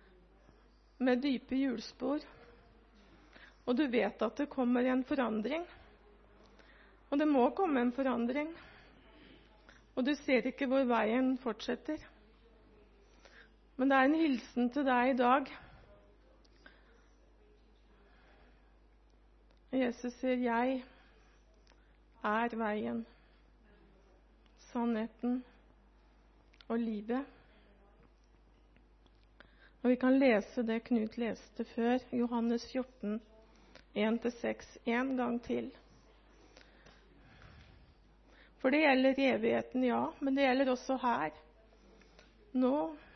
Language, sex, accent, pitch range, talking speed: Swedish, female, native, 235-265 Hz, 95 wpm